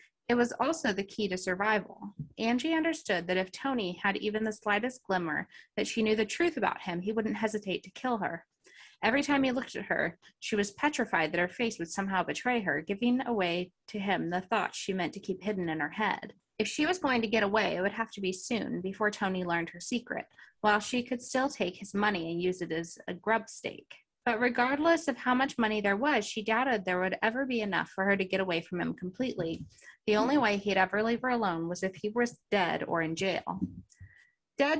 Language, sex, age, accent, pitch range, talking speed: English, female, 20-39, American, 185-245 Hz, 230 wpm